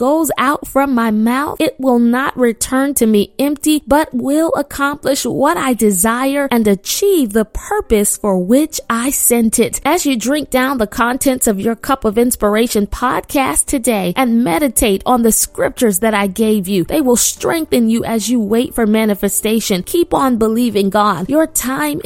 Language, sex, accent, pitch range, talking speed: English, female, American, 220-265 Hz, 175 wpm